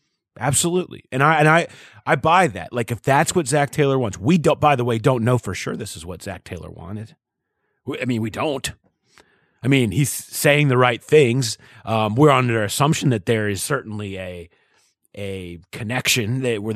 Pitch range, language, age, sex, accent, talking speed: 110-150 Hz, English, 30-49, male, American, 195 wpm